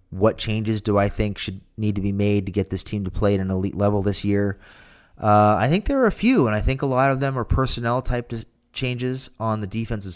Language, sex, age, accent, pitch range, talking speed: English, male, 30-49, American, 85-100 Hz, 250 wpm